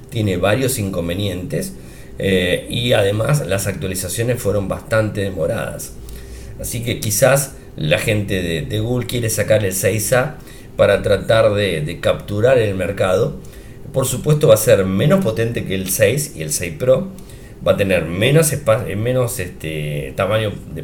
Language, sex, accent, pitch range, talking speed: Spanish, male, Argentinian, 100-135 Hz, 145 wpm